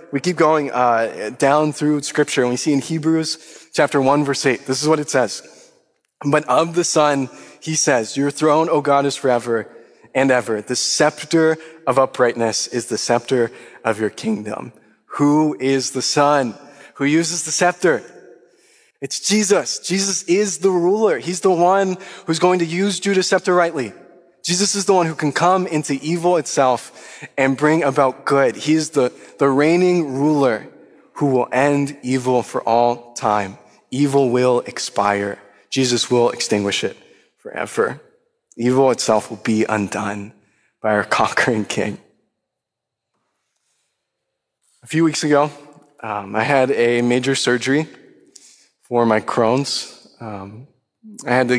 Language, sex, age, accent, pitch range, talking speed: English, male, 20-39, American, 125-165 Hz, 150 wpm